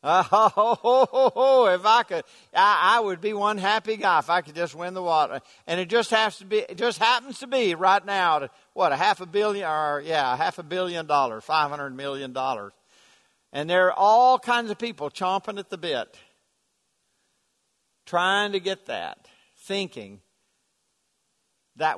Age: 60-79